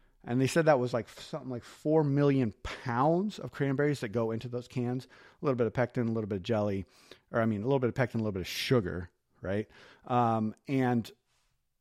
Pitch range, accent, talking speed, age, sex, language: 105-130 Hz, American, 225 wpm, 40-59, male, English